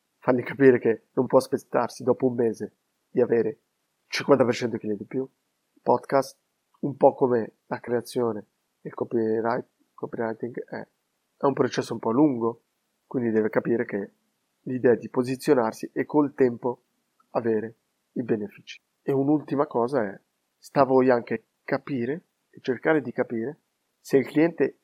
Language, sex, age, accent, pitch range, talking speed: Italian, male, 30-49, native, 120-135 Hz, 145 wpm